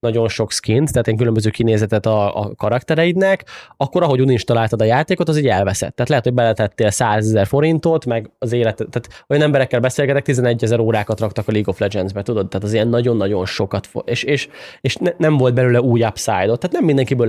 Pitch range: 110-140 Hz